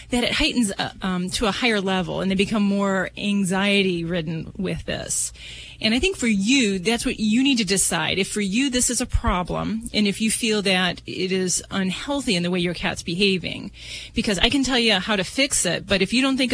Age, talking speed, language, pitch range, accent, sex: 30-49, 230 wpm, English, 180-225 Hz, American, female